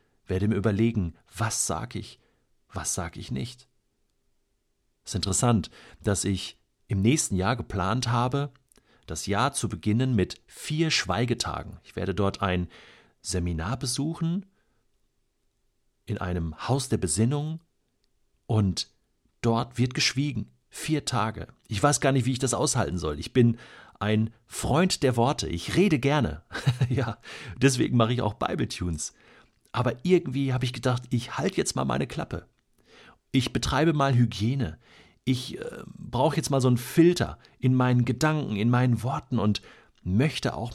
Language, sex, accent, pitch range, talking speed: German, male, German, 100-135 Hz, 150 wpm